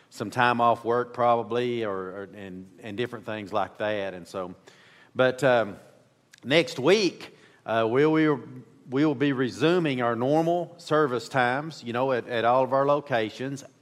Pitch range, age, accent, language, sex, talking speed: 115-140 Hz, 40-59, American, English, male, 160 wpm